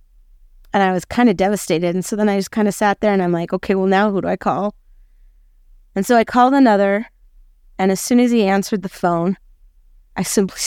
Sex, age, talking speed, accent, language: female, 30-49, 225 wpm, American, English